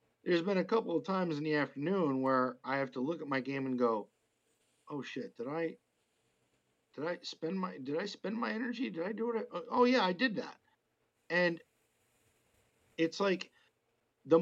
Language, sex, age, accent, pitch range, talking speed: English, male, 50-69, American, 130-185 Hz, 185 wpm